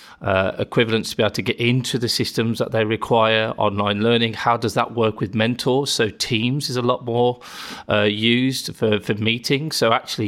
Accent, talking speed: British, 200 wpm